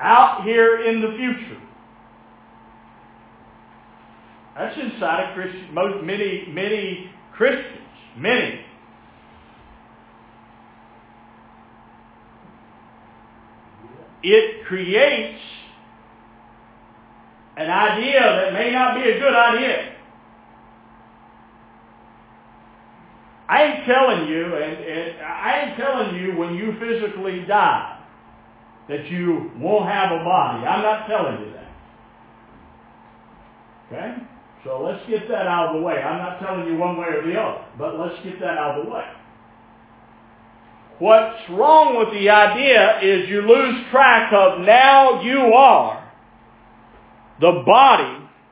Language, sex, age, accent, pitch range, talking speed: English, male, 50-69, American, 170-245 Hz, 115 wpm